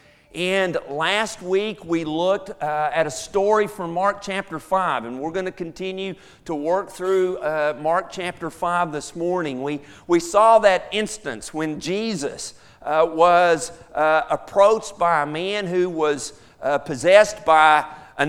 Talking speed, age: 155 wpm, 50-69